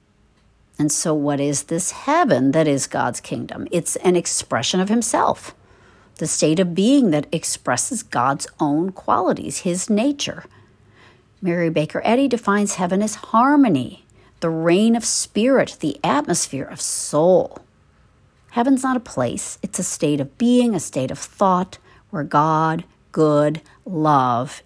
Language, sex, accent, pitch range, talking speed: English, female, American, 145-205 Hz, 140 wpm